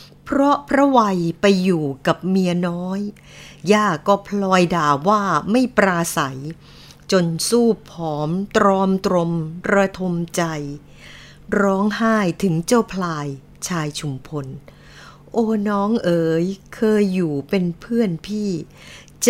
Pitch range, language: 160-205 Hz, Thai